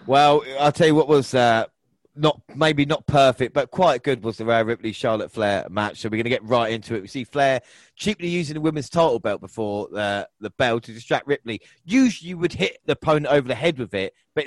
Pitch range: 115-145 Hz